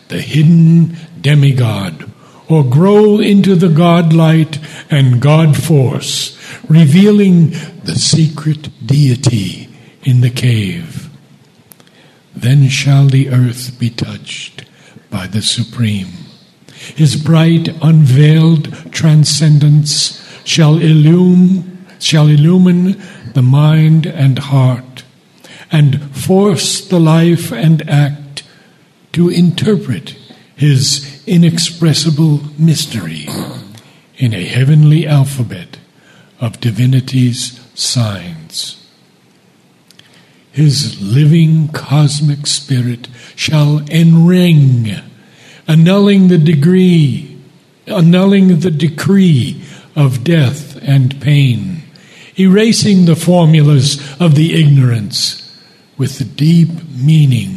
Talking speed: 85 wpm